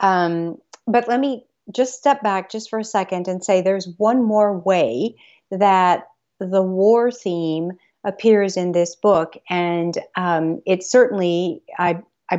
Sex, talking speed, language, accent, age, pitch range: female, 150 wpm, English, American, 50-69, 175-210 Hz